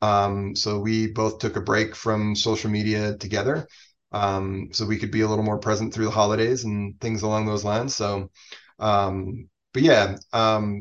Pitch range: 105-120 Hz